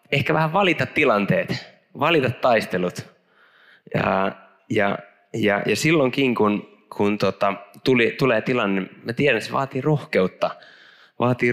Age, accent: 20-39, native